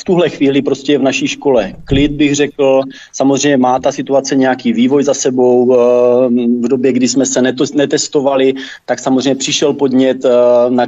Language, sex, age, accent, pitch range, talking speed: Czech, male, 30-49, native, 130-140 Hz, 165 wpm